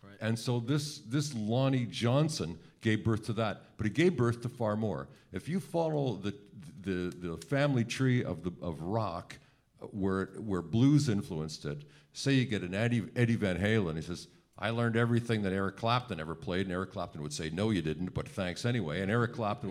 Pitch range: 95-130 Hz